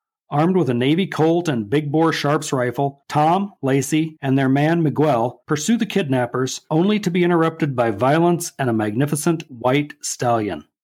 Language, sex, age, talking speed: English, male, 40-59, 165 wpm